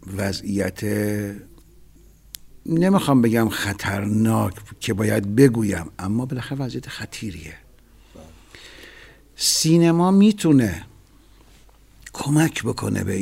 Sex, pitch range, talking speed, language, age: male, 100-135 Hz, 75 wpm, Persian, 60-79